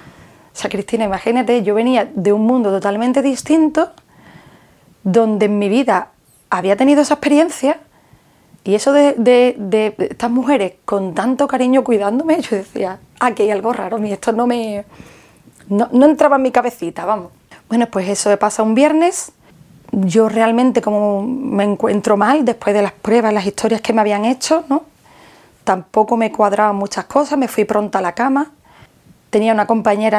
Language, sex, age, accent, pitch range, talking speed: Spanish, female, 30-49, Spanish, 200-250 Hz, 170 wpm